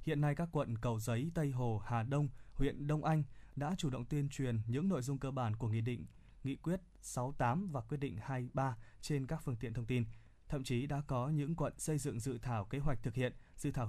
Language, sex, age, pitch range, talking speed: Vietnamese, male, 20-39, 120-150 Hz, 245 wpm